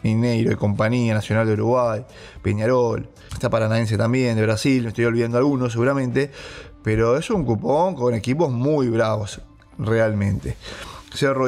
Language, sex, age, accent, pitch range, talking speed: English, male, 20-39, Argentinian, 115-140 Hz, 140 wpm